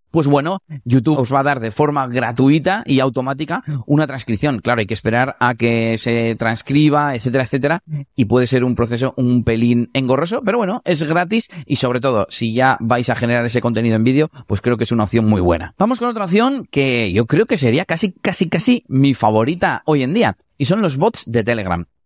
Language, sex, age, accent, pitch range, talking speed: Spanish, male, 30-49, Spanish, 115-155 Hz, 215 wpm